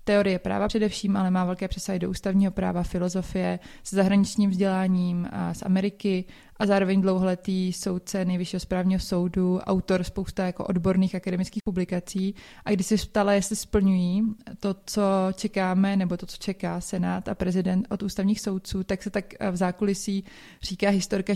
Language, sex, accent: Czech, female, native